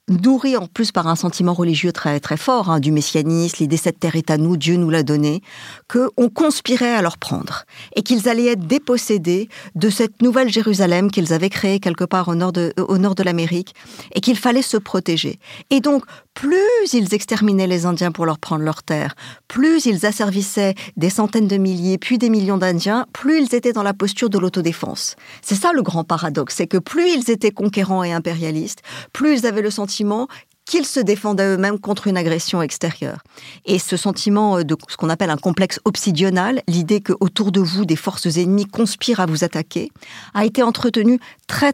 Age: 50-69